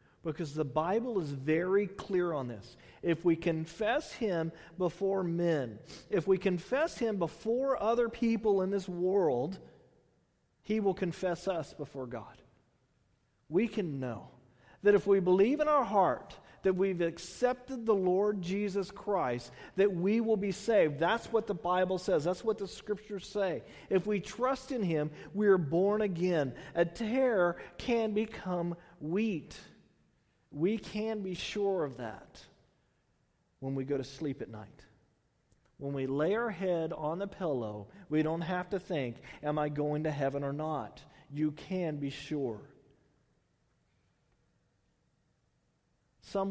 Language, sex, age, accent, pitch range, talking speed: English, male, 40-59, American, 140-200 Hz, 145 wpm